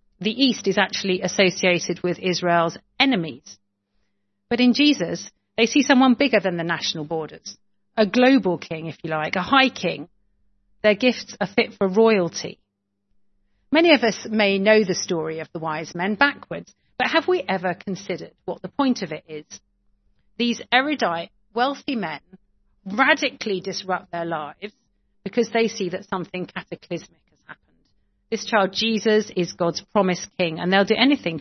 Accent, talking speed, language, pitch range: British, 155 wpm, English, 165-215 Hz